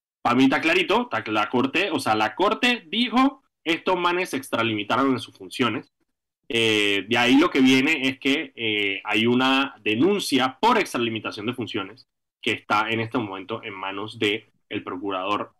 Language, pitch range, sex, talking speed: Spanish, 110-140 Hz, male, 170 wpm